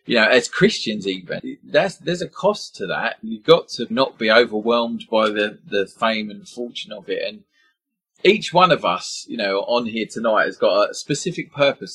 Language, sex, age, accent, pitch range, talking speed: English, male, 30-49, British, 120-200 Hz, 200 wpm